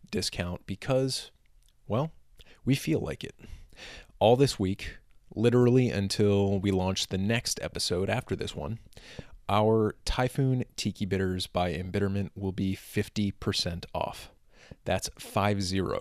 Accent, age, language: American, 30-49, English